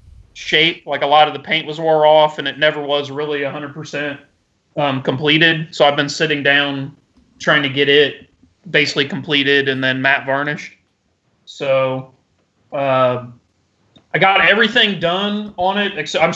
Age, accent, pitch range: 30-49, American, 140-165 Hz